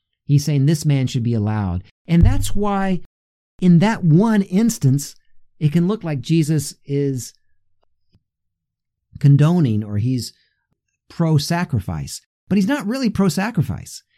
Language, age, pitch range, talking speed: English, 50-69, 110-180 Hz, 125 wpm